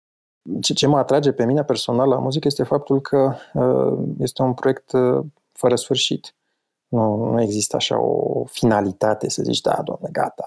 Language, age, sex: Romanian, 30-49, male